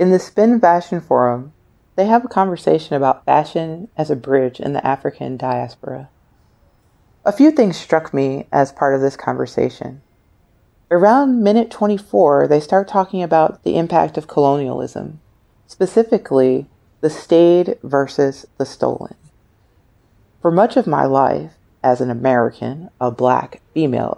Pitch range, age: 125-185 Hz, 40-59